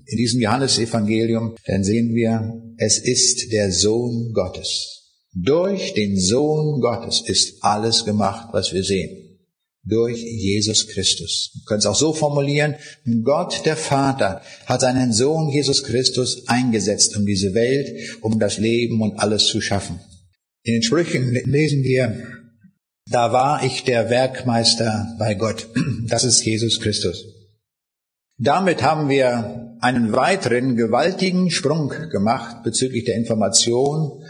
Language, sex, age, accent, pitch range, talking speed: German, male, 50-69, German, 110-145 Hz, 135 wpm